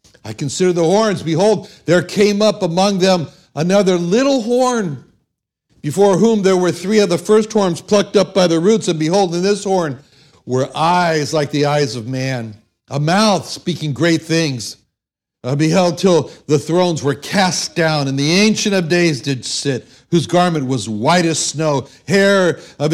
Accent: American